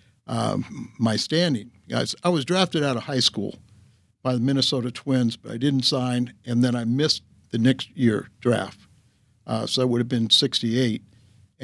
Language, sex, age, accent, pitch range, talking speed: English, male, 60-79, American, 115-135 Hz, 180 wpm